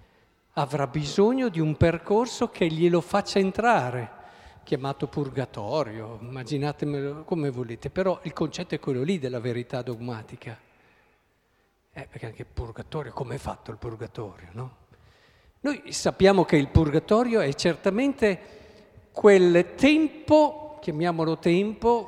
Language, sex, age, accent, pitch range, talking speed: Italian, male, 50-69, native, 125-200 Hz, 120 wpm